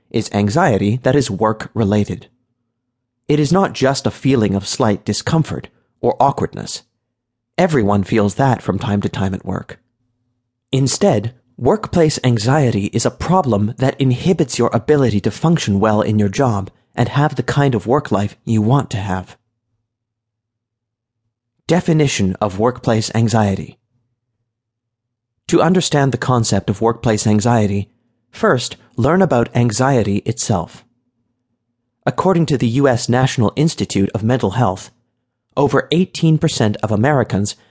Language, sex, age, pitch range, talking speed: English, male, 30-49, 105-130 Hz, 130 wpm